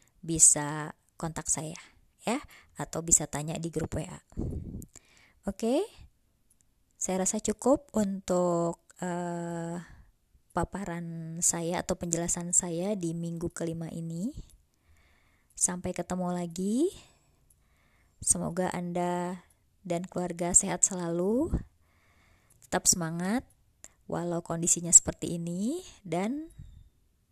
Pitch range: 170-195 Hz